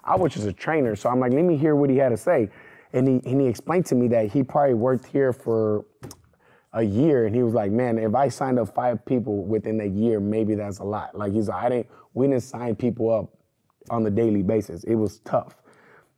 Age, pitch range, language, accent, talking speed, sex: 20-39, 110-135 Hz, English, American, 245 wpm, male